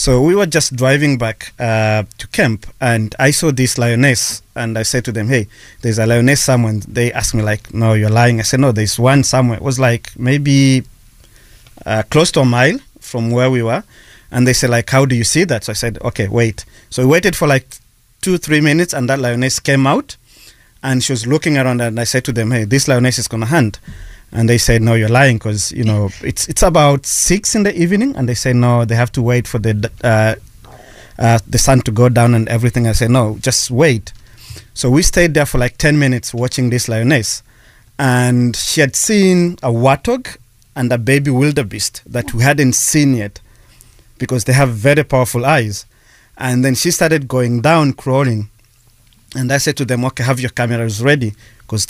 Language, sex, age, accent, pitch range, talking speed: English, male, 30-49, South African, 115-135 Hz, 215 wpm